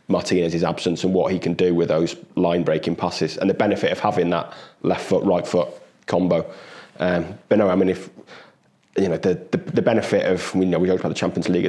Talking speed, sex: 225 wpm, male